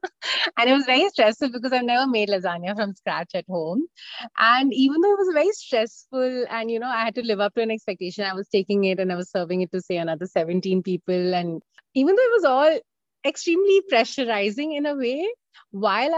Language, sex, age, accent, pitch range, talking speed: English, female, 30-49, Indian, 170-235 Hz, 215 wpm